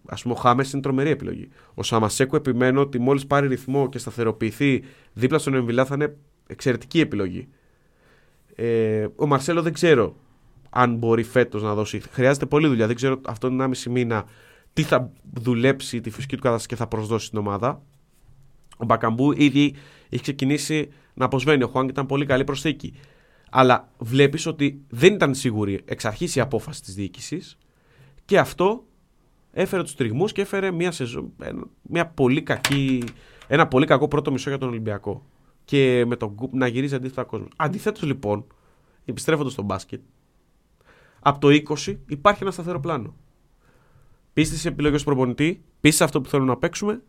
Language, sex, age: Greek, male, 30-49